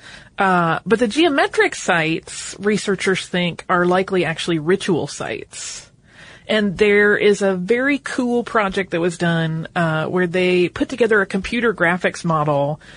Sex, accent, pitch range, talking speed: female, American, 165-210 Hz, 145 wpm